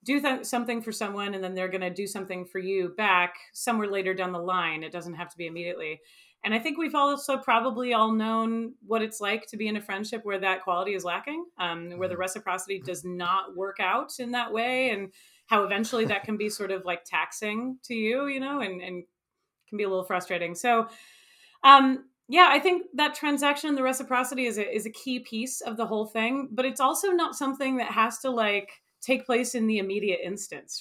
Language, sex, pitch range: English, female, 185-240 Hz